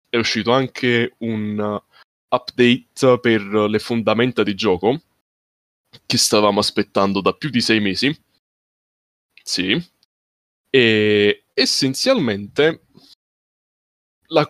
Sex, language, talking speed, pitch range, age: male, Italian, 90 wpm, 105-125 Hz, 20-39